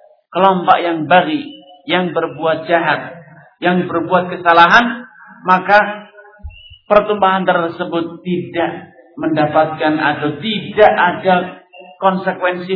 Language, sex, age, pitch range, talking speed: Malay, male, 50-69, 170-205 Hz, 85 wpm